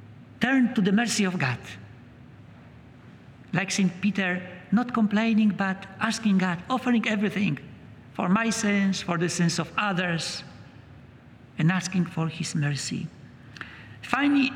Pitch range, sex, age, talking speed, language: 170-225 Hz, male, 60-79, 125 wpm, English